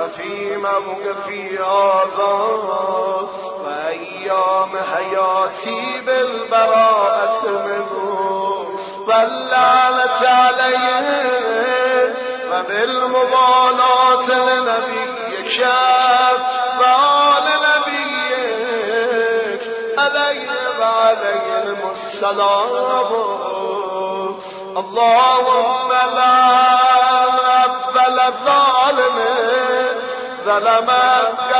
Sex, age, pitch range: male, 40-59, 205-255 Hz